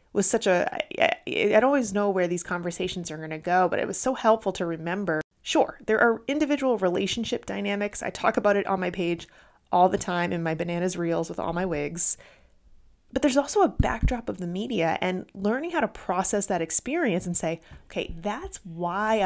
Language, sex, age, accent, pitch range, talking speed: English, female, 30-49, American, 175-235 Hz, 205 wpm